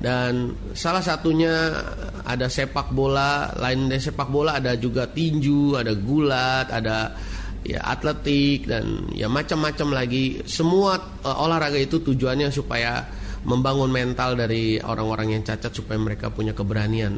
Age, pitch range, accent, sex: 30-49, 115-145 Hz, native, male